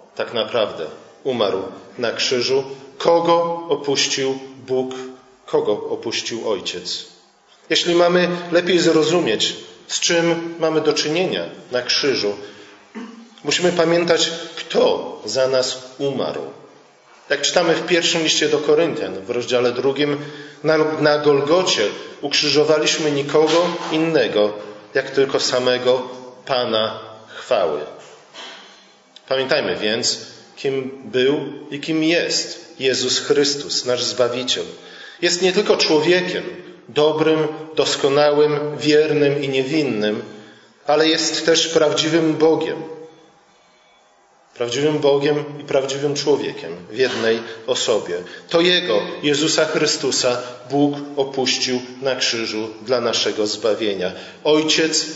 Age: 40-59